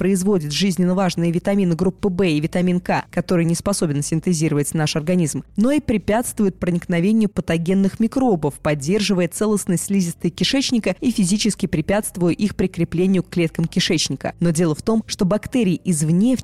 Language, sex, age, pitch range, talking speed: Russian, female, 20-39, 165-200 Hz, 150 wpm